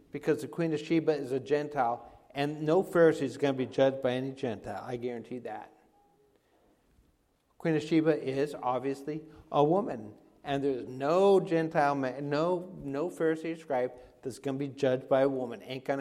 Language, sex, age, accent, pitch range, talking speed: English, male, 50-69, American, 135-160 Hz, 175 wpm